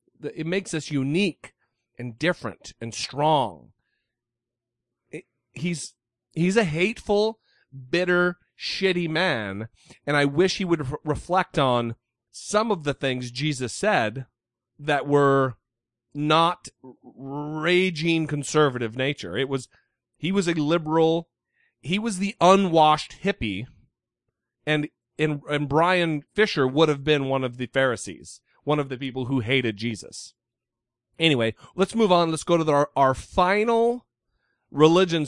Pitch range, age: 120-165 Hz, 40-59